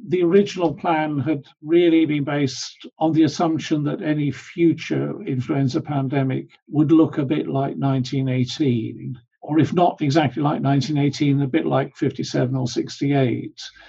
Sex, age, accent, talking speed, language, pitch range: male, 50-69, British, 145 wpm, English, 130-150 Hz